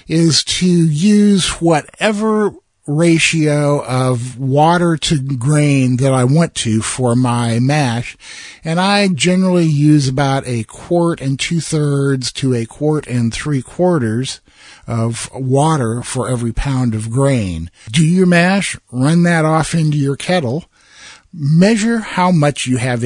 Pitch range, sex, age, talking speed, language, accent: 125-160 Hz, male, 50-69, 140 wpm, English, American